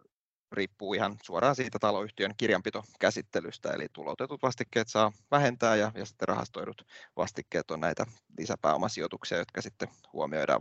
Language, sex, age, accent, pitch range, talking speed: Finnish, male, 20-39, native, 105-115 Hz, 125 wpm